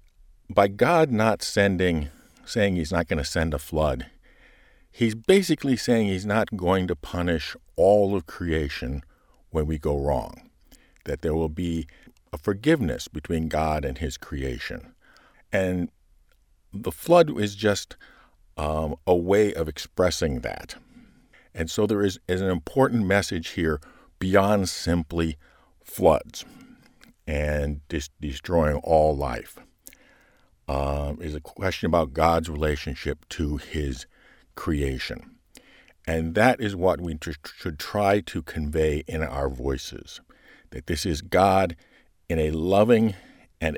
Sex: male